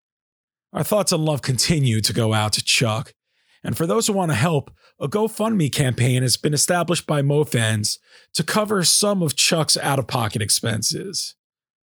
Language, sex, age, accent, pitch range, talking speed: English, male, 40-59, American, 115-170 Hz, 160 wpm